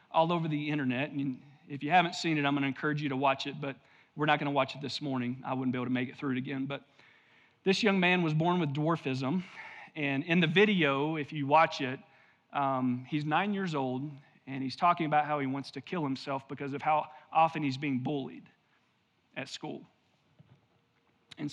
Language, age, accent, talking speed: English, 40-59, American, 215 wpm